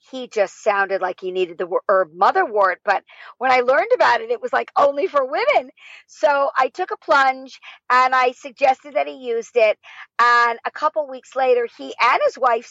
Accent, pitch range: American, 210-315 Hz